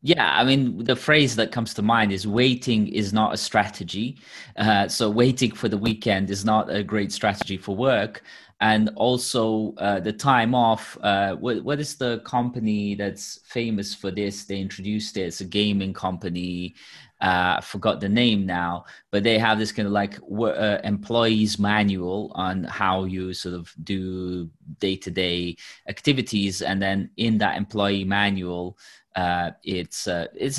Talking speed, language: 165 wpm, English